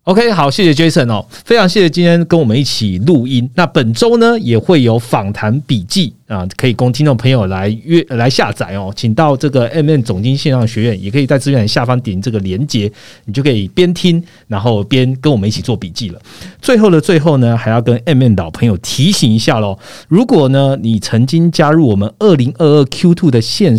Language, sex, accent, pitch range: Chinese, male, native, 110-155 Hz